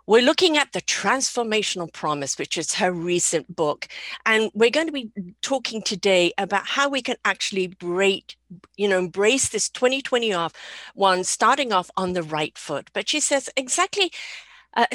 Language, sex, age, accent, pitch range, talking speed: English, female, 50-69, British, 185-265 Hz, 170 wpm